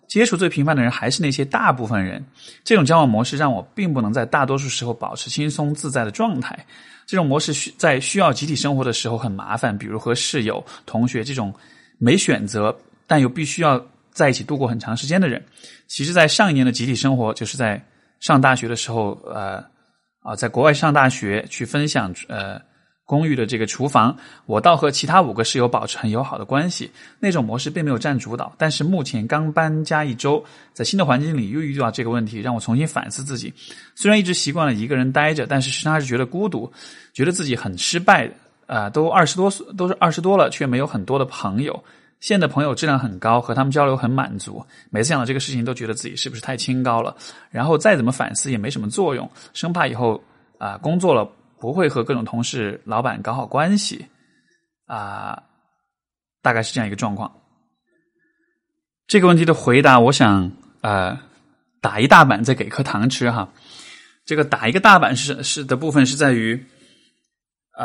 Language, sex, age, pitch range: Chinese, male, 20-39, 120-155 Hz